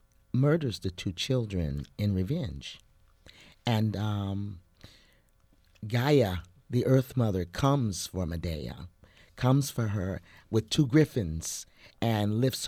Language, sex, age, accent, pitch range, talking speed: English, male, 50-69, American, 95-115 Hz, 110 wpm